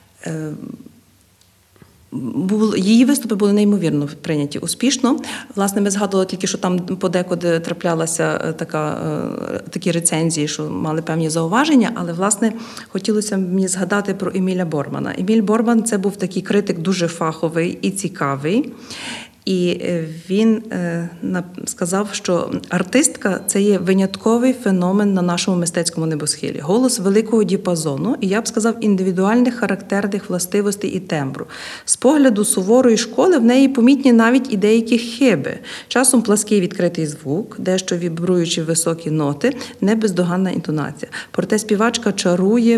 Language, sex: Ukrainian, female